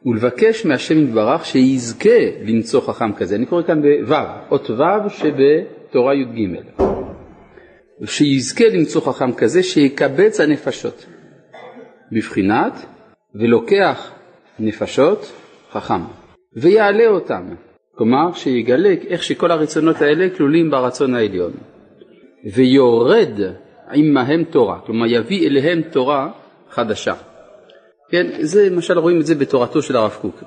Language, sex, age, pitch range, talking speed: Hebrew, male, 40-59, 130-185 Hz, 110 wpm